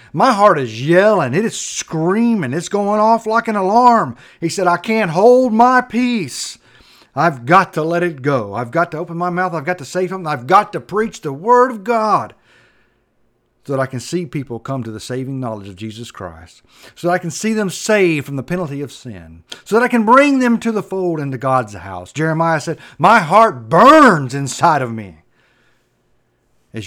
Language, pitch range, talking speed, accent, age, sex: English, 120-180 Hz, 205 wpm, American, 50-69, male